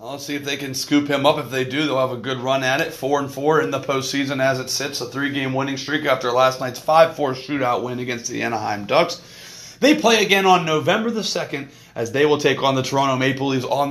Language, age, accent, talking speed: English, 30-49, American, 250 wpm